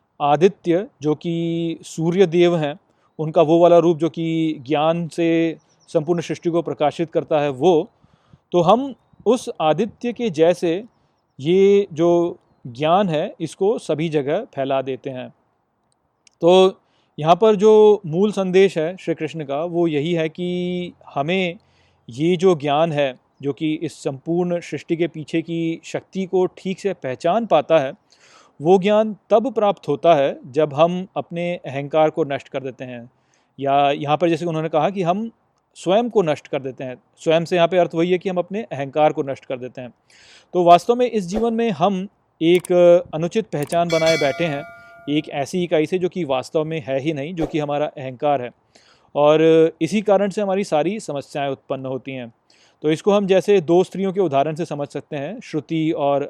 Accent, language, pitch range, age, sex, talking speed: native, Hindi, 150-185 Hz, 30-49, male, 180 wpm